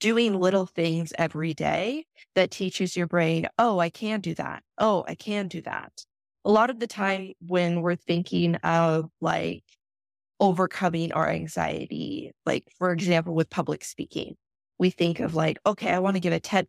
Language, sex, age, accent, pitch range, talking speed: English, female, 20-39, American, 165-185 Hz, 175 wpm